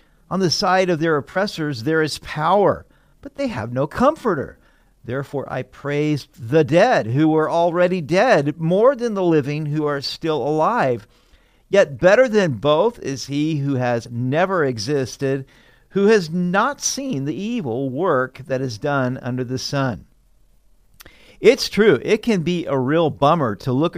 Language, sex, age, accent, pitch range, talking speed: English, male, 50-69, American, 130-180 Hz, 160 wpm